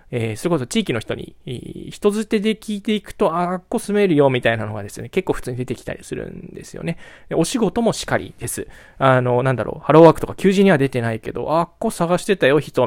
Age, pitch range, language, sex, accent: 20-39, 130-195 Hz, Japanese, male, native